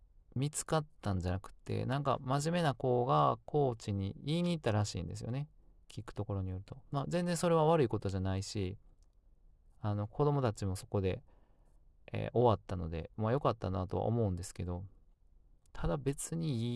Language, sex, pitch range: Japanese, male, 95-135 Hz